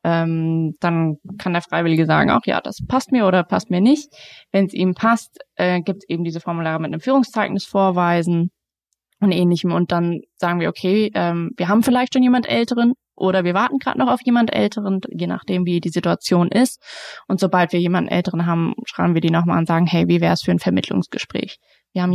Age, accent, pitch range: 20-39, German, 175-210 Hz